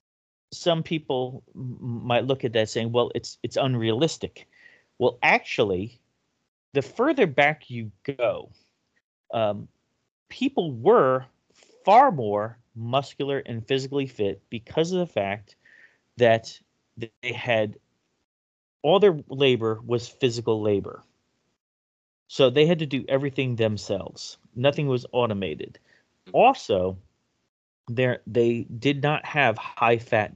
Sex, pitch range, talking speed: male, 105-135 Hz, 120 wpm